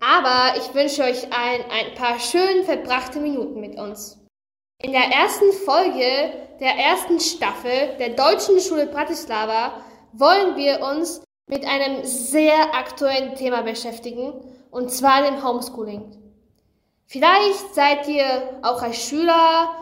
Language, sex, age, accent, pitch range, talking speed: German, female, 10-29, German, 245-310 Hz, 125 wpm